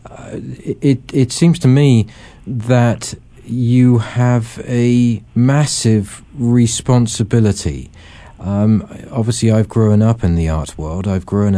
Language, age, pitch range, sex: English, 50-69, 95-110 Hz, male